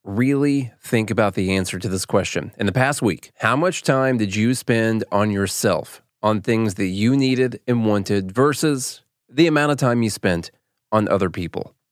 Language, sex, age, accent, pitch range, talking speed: English, male, 30-49, American, 105-140 Hz, 185 wpm